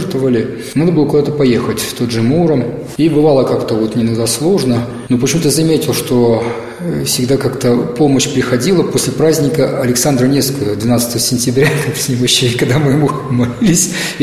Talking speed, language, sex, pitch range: 145 wpm, Russian, male, 125-150 Hz